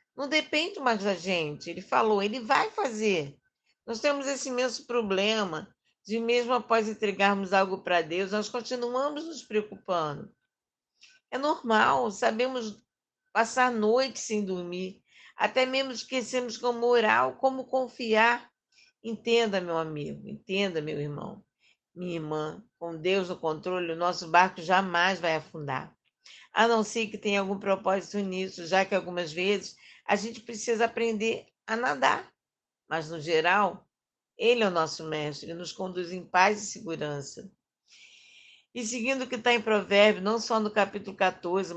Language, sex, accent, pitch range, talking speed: Portuguese, female, Brazilian, 185-240 Hz, 150 wpm